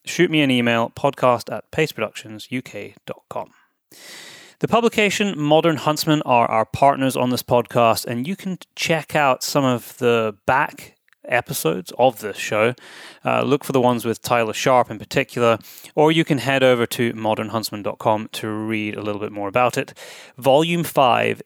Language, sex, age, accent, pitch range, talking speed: English, male, 20-39, British, 115-145 Hz, 160 wpm